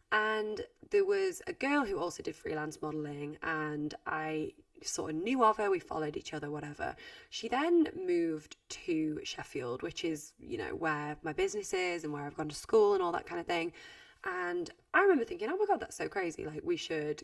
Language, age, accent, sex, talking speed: English, 20-39, British, female, 210 wpm